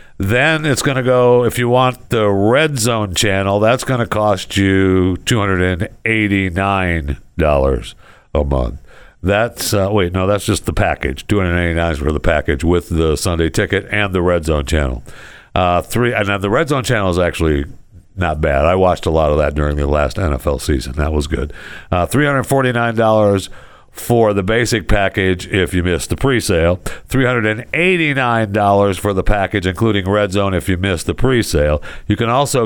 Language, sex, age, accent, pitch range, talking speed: English, male, 60-79, American, 85-120 Hz, 185 wpm